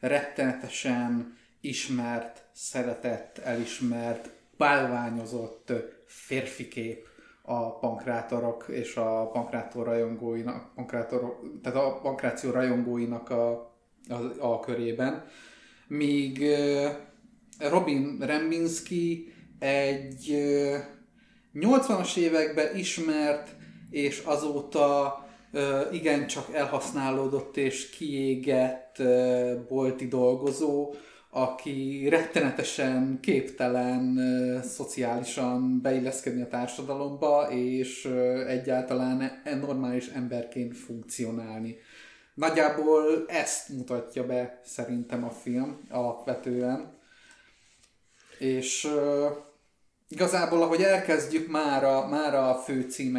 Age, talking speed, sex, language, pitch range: 30-49, 80 wpm, male, Hungarian, 120-145 Hz